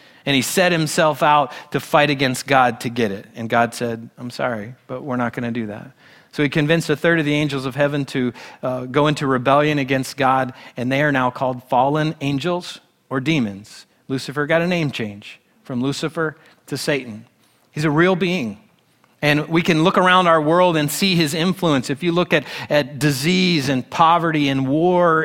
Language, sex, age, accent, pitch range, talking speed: English, male, 40-59, American, 135-170 Hz, 200 wpm